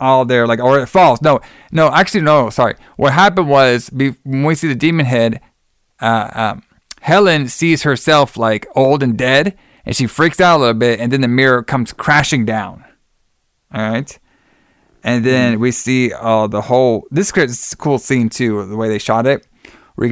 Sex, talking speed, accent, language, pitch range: male, 190 wpm, American, English, 115-140 Hz